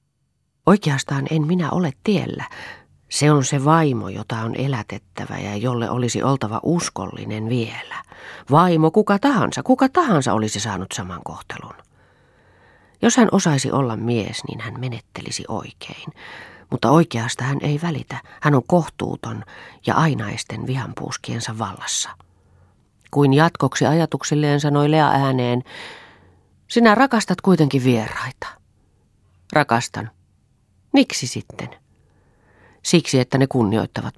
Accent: native